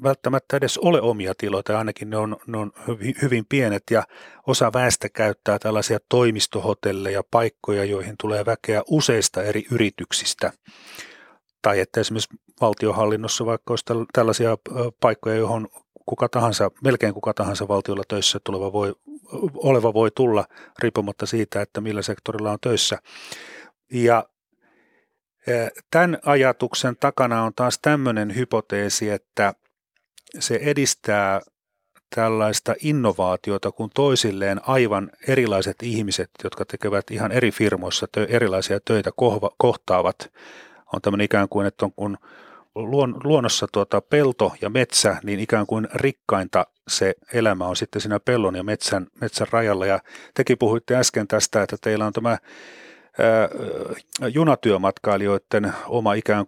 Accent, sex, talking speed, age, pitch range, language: native, male, 125 wpm, 30-49, 100-120 Hz, Finnish